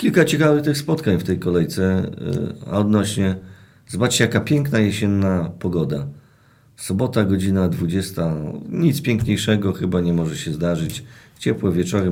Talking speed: 125 wpm